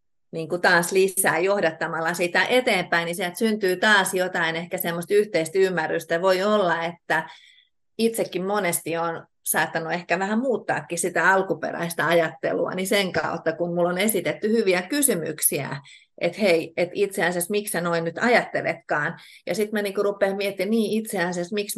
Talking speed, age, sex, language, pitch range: 155 wpm, 30-49, female, Finnish, 165-205 Hz